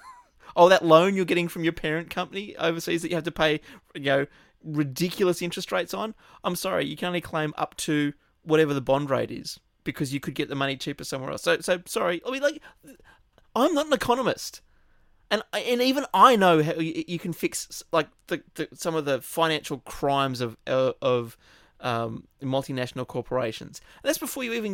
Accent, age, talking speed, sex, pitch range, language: Australian, 30-49, 190 wpm, male, 150-190 Hz, English